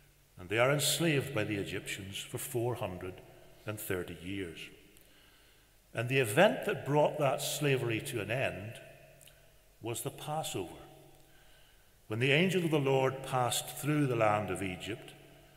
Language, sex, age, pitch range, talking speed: English, male, 60-79, 110-145 Hz, 135 wpm